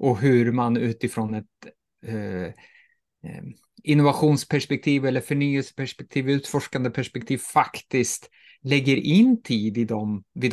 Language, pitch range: Swedish, 115-145 Hz